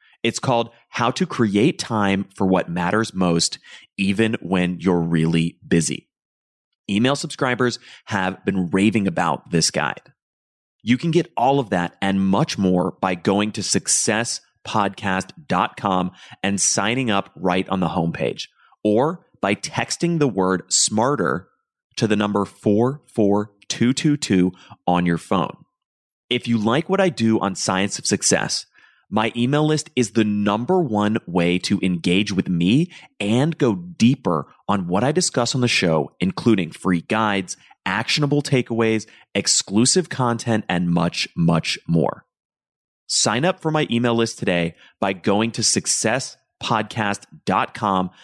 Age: 30-49